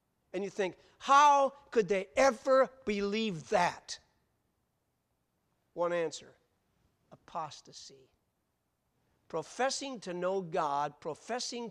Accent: American